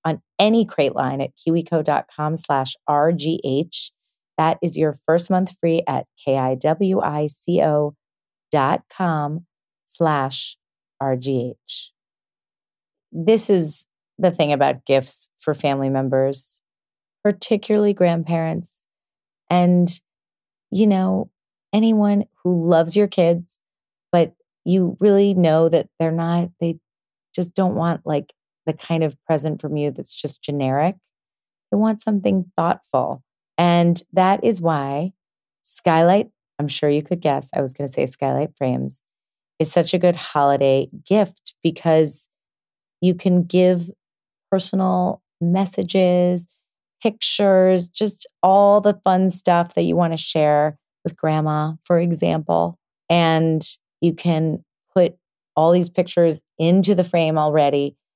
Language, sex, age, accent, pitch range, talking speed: English, female, 30-49, American, 150-185 Hz, 125 wpm